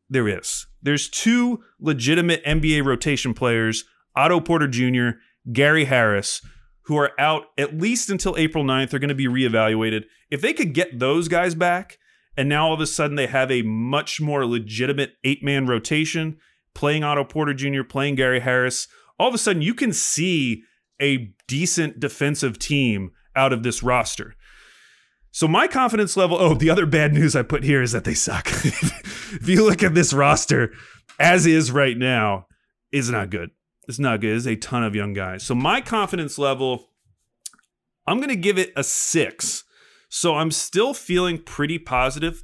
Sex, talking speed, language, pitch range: male, 175 wpm, English, 125-165 Hz